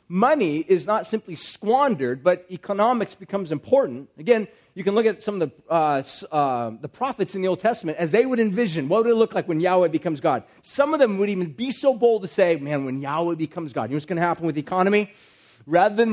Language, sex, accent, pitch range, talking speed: English, male, American, 165-210 Hz, 240 wpm